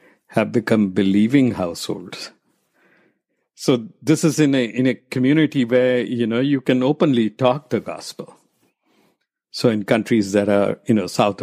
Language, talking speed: English, 150 wpm